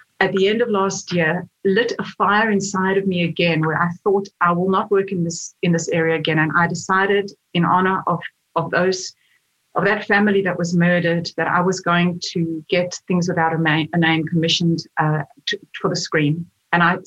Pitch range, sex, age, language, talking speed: 165-200 Hz, female, 40-59, English, 205 wpm